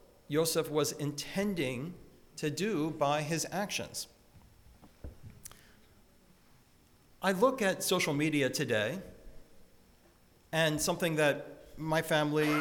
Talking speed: 90 wpm